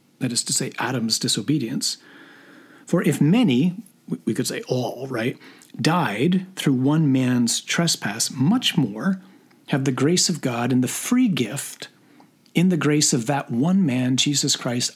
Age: 40-59